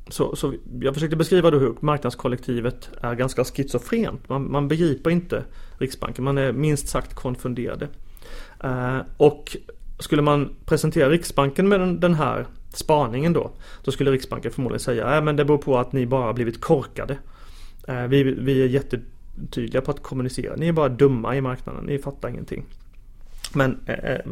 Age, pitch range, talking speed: 30-49, 125-150 Hz, 165 wpm